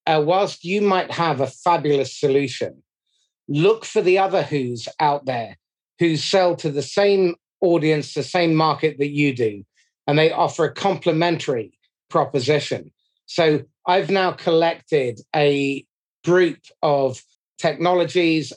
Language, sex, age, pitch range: English, male, 30-49, 145-185 Hz